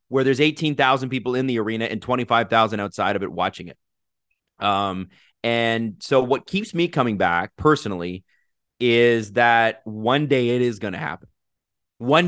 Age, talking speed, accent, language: 30-49, 160 wpm, American, English